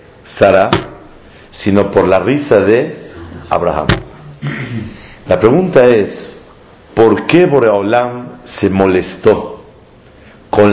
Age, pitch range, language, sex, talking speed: 50-69, 100-130 Hz, Spanish, male, 90 wpm